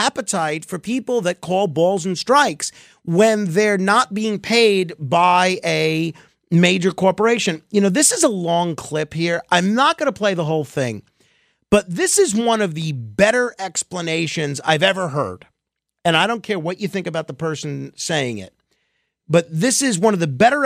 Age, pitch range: 40-59, 150-210 Hz